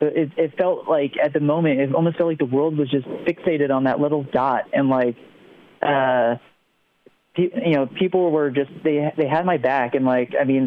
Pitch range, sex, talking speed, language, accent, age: 130-160 Hz, male, 215 wpm, English, American, 20-39